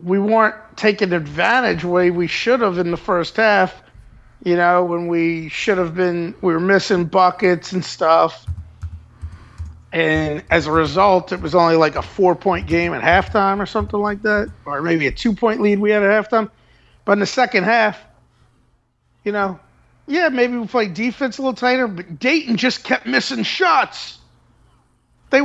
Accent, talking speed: American, 175 wpm